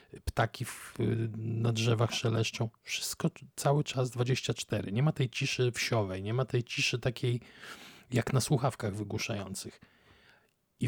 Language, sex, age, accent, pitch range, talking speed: Polish, male, 40-59, native, 110-130 Hz, 125 wpm